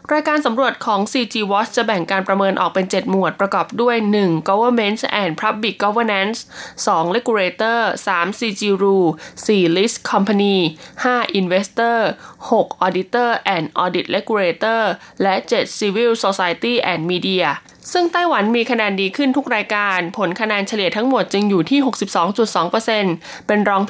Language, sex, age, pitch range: Thai, female, 20-39, 190-240 Hz